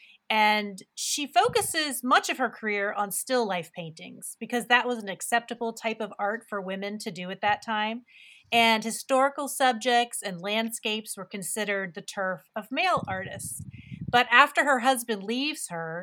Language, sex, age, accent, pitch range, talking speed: English, female, 30-49, American, 190-240 Hz, 165 wpm